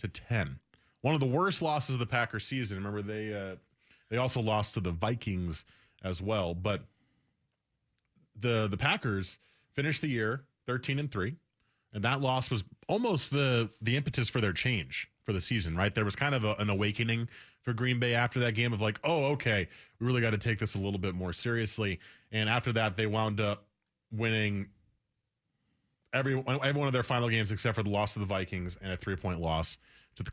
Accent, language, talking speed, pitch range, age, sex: American, English, 205 wpm, 95-125 Hz, 20-39, male